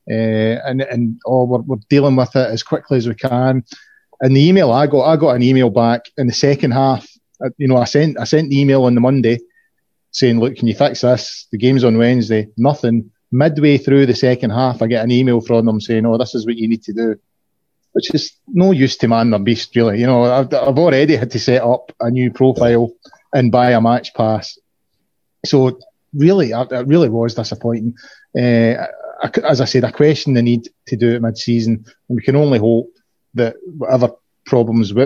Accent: British